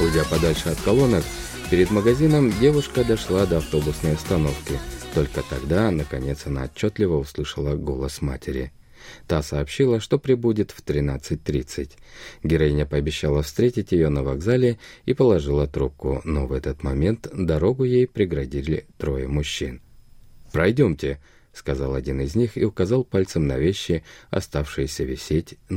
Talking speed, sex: 130 wpm, male